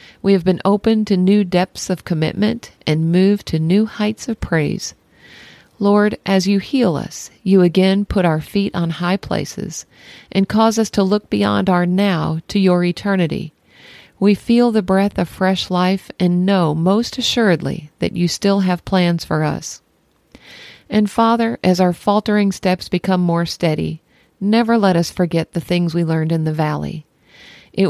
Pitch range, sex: 170-200 Hz, female